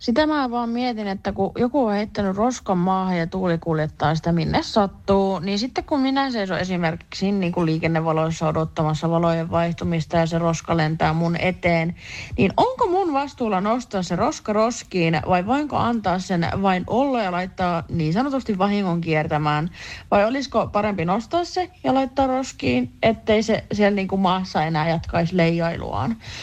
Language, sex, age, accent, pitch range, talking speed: Finnish, female, 30-49, native, 140-210 Hz, 155 wpm